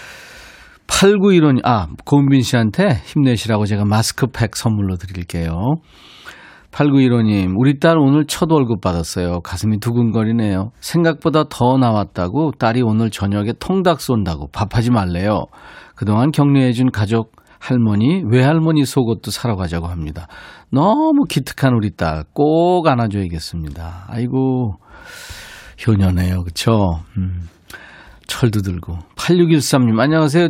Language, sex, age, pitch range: Korean, male, 40-59, 100-145 Hz